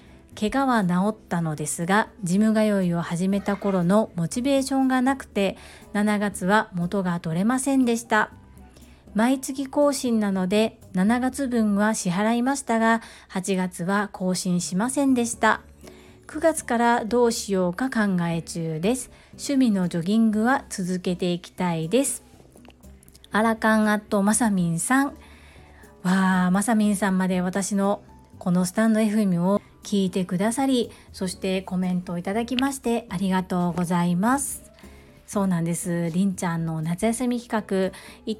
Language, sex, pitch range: Japanese, female, 180-235 Hz